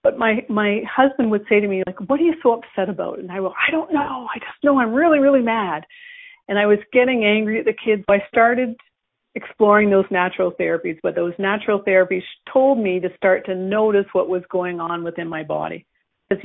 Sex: female